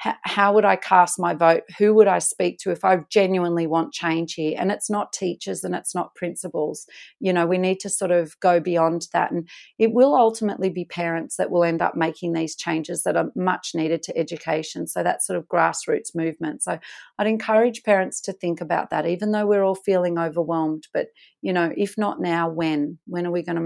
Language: English